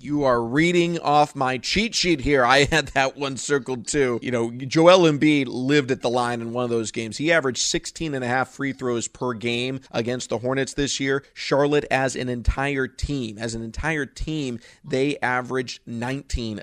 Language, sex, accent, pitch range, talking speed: English, male, American, 120-145 Hz, 190 wpm